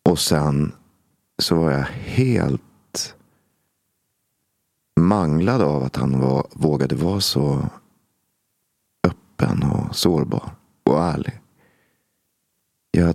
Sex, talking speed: male, 85 wpm